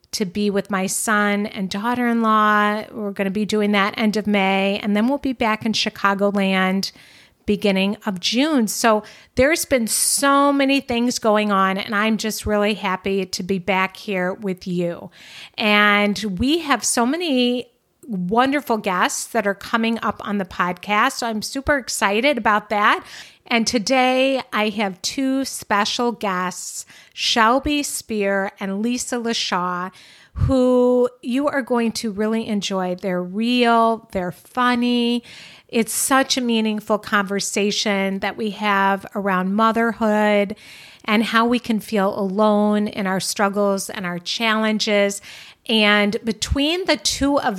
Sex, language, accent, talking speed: female, English, American, 145 wpm